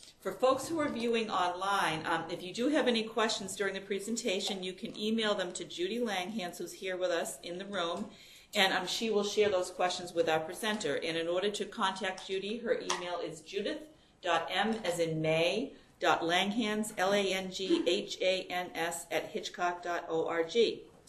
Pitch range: 165-200 Hz